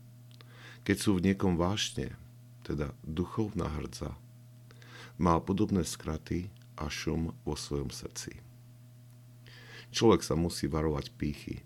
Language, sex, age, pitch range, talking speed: Slovak, male, 50-69, 75-120 Hz, 110 wpm